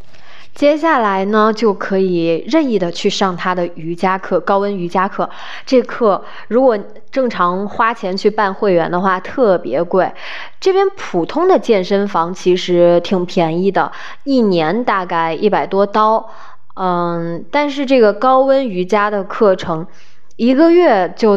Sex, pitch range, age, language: female, 180-235 Hz, 20-39, Chinese